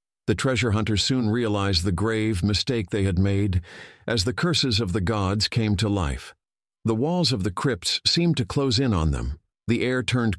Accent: American